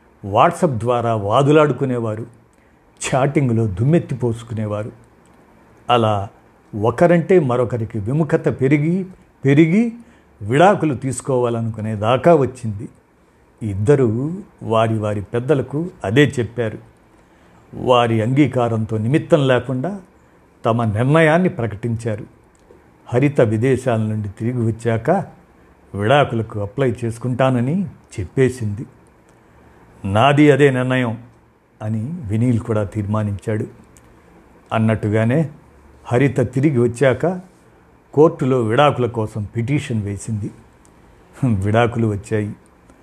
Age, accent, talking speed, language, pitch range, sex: 50-69, native, 75 wpm, Telugu, 110-135 Hz, male